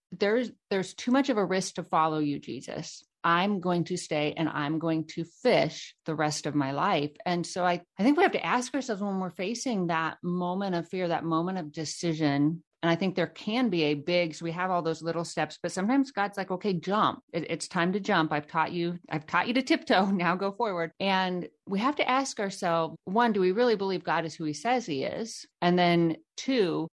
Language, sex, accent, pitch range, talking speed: English, female, American, 155-195 Hz, 230 wpm